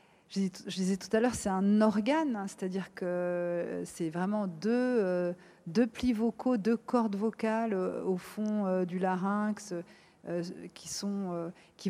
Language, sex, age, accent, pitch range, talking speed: French, female, 50-69, French, 185-220 Hz, 130 wpm